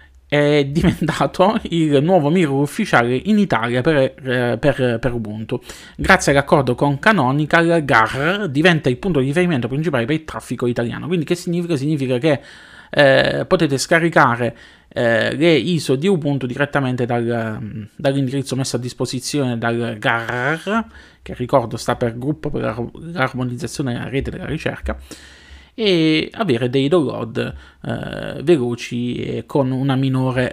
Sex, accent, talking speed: male, native, 130 wpm